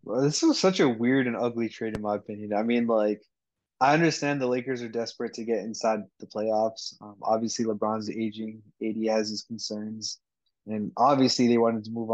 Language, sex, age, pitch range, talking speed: English, male, 20-39, 110-125 Hz, 200 wpm